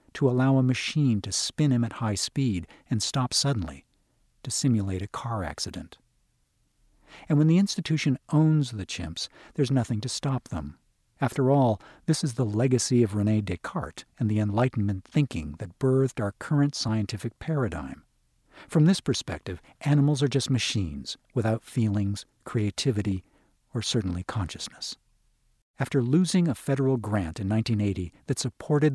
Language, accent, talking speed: English, American, 145 wpm